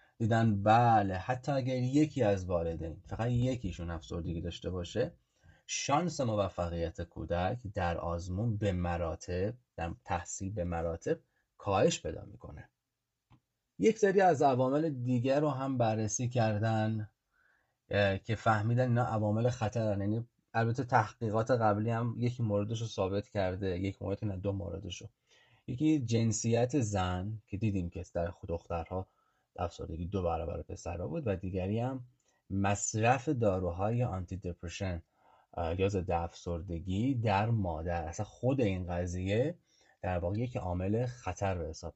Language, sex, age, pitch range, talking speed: Persian, male, 30-49, 90-120 Hz, 130 wpm